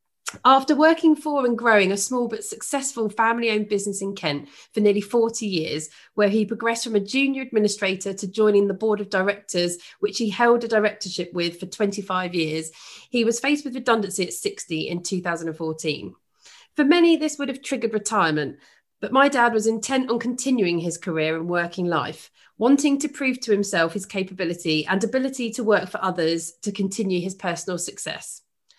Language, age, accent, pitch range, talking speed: English, 30-49, British, 175-245 Hz, 175 wpm